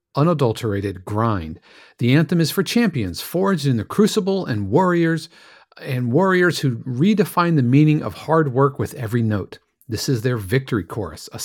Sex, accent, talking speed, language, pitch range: male, American, 165 wpm, English, 125-175 Hz